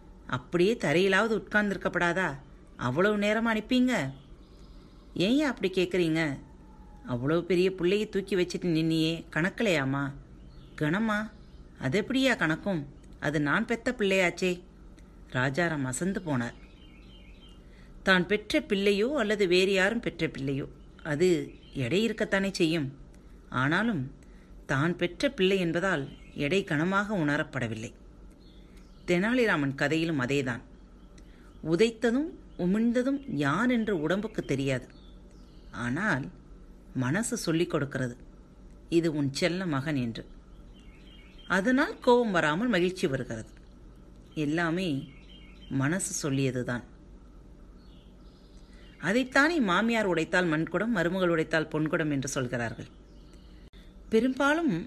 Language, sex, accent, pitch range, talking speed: Tamil, female, native, 135-200 Hz, 90 wpm